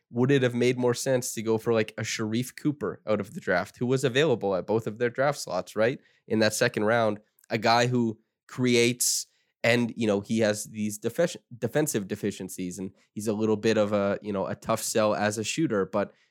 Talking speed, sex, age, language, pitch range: 215 wpm, male, 20-39, English, 100-120 Hz